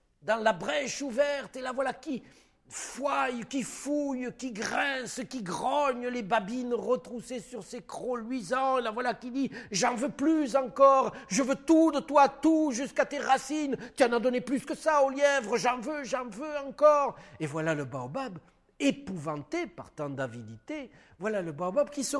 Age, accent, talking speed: 50-69, French, 180 wpm